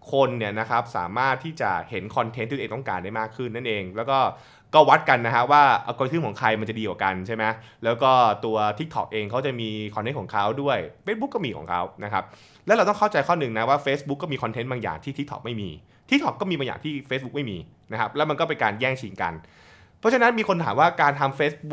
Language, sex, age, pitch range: Thai, male, 20-39, 110-155 Hz